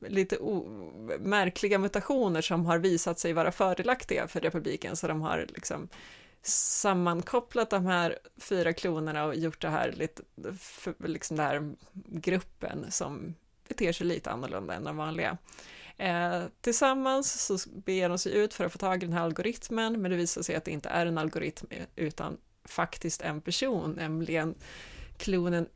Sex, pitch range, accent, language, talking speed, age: female, 165-195 Hz, native, Swedish, 165 wpm, 20-39